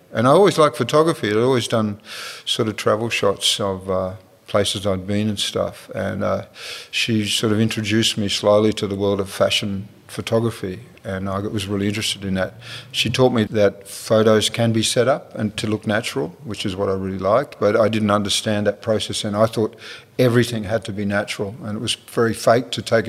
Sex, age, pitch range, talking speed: male, 50-69, 105-125 Hz, 210 wpm